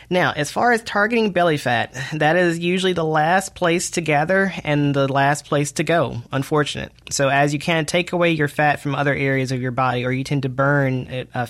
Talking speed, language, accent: 220 wpm, English, American